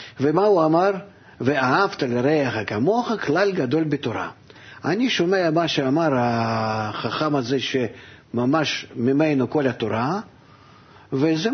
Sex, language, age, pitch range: male, Hebrew, 50-69, 115-145 Hz